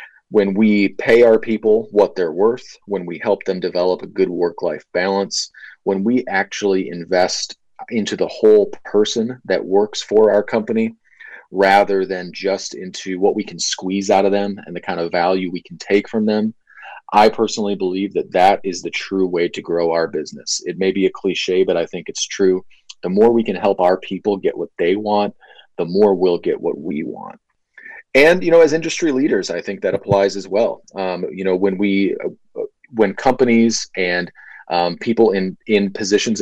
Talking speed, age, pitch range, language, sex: 195 wpm, 30-49, 95-120 Hz, English, male